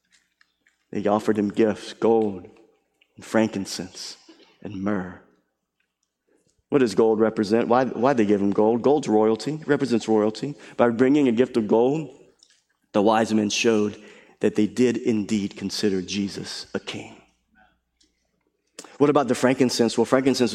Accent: American